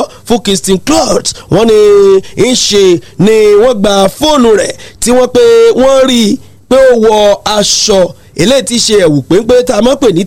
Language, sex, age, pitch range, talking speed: English, male, 40-59, 190-260 Hz, 175 wpm